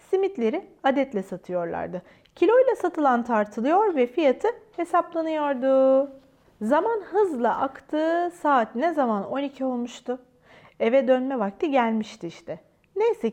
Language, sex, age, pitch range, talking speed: Turkish, female, 40-59, 210-300 Hz, 105 wpm